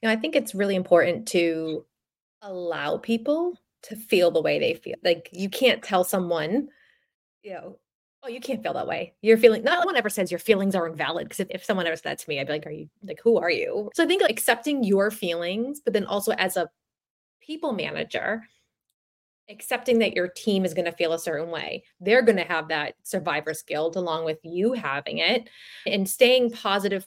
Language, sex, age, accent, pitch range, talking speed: English, female, 20-39, American, 175-250 Hz, 215 wpm